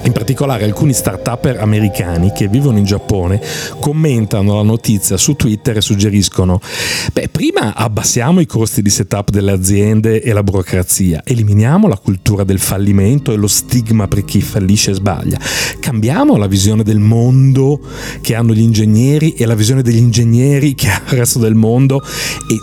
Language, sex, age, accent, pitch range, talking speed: Italian, male, 40-59, native, 105-135 Hz, 160 wpm